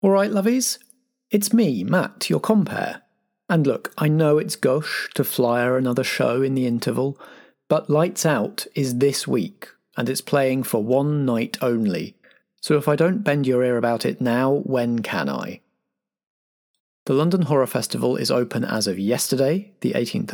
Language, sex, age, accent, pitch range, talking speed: English, male, 40-59, British, 125-180 Hz, 170 wpm